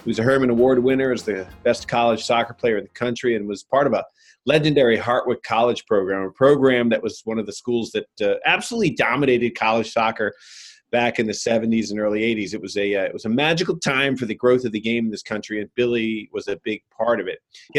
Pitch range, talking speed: 110-135 Hz, 240 wpm